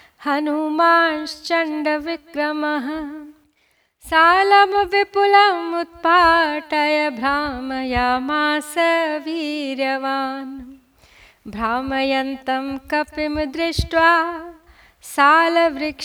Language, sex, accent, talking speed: Hindi, female, native, 45 wpm